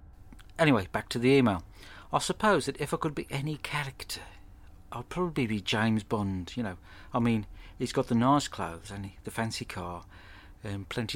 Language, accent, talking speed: English, British, 185 wpm